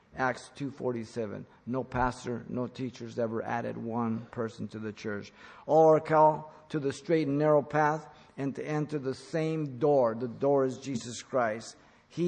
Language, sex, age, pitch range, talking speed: English, male, 50-69, 125-155 Hz, 165 wpm